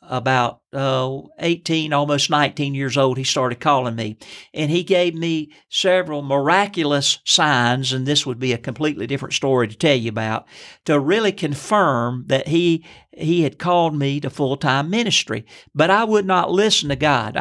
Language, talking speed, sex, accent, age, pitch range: English, 170 wpm, male, American, 50-69, 135-175 Hz